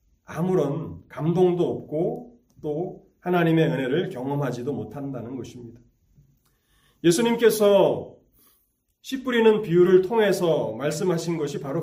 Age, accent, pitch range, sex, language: 30-49, native, 140-190 Hz, male, Korean